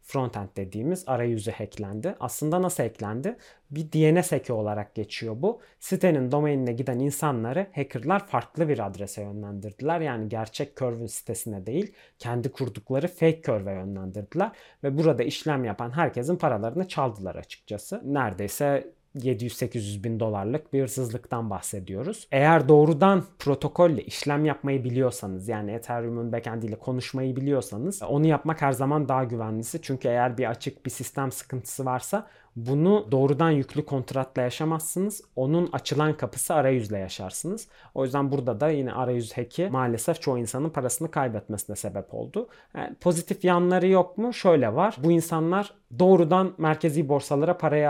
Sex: male